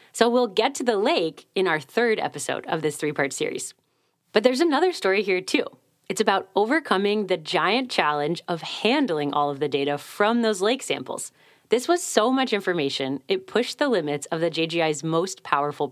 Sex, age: female, 30-49